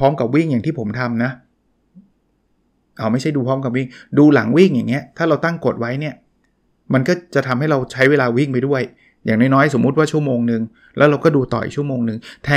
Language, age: Thai, 20-39